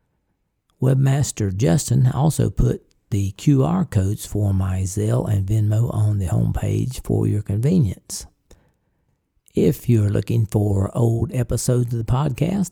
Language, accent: English, American